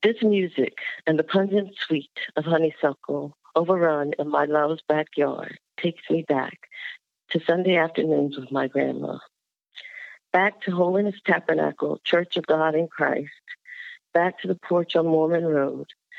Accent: American